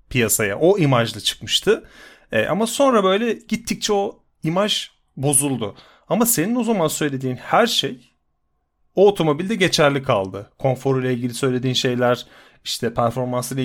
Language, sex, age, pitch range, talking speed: Turkish, male, 30-49, 110-165 Hz, 130 wpm